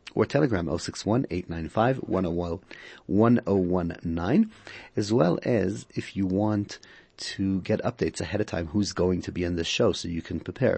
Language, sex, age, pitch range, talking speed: English, male, 40-59, 85-105 Hz, 145 wpm